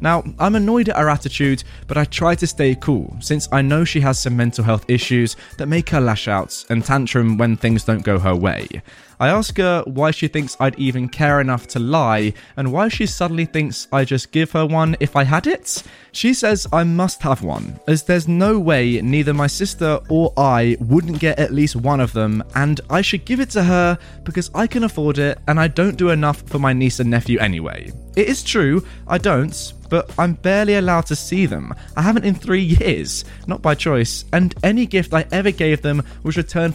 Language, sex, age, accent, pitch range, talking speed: English, male, 20-39, British, 125-170 Hz, 220 wpm